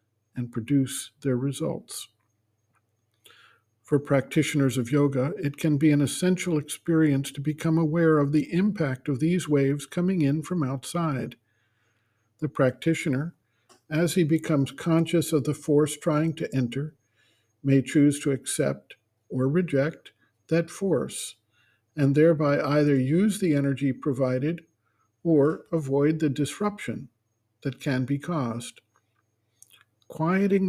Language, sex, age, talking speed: English, male, 50-69, 125 wpm